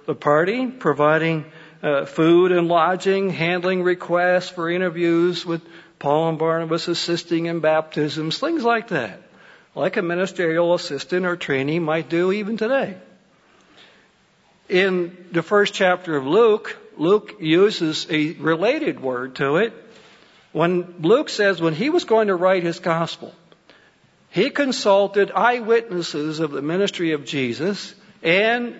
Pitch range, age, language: 155-195 Hz, 60-79, English